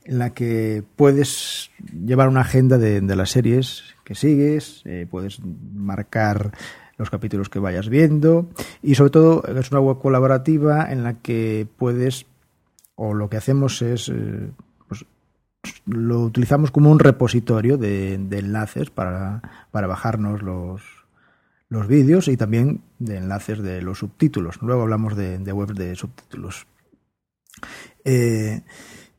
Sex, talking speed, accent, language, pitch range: male, 140 wpm, Spanish, English, 100-130 Hz